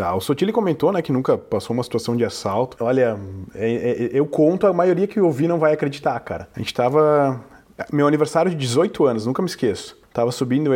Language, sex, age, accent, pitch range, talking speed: Portuguese, male, 20-39, Brazilian, 120-170 Hz, 200 wpm